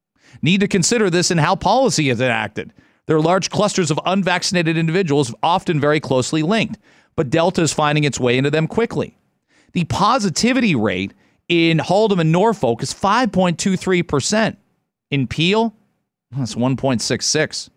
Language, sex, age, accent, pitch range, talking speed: English, male, 40-59, American, 150-195 Hz, 165 wpm